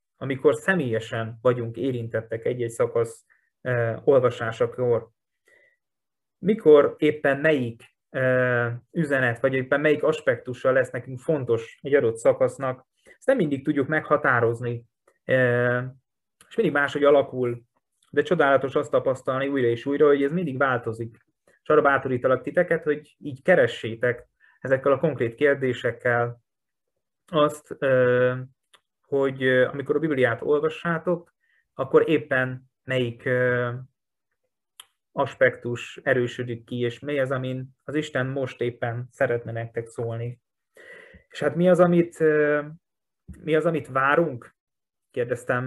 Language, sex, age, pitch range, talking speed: Hungarian, male, 20-39, 125-155 Hz, 115 wpm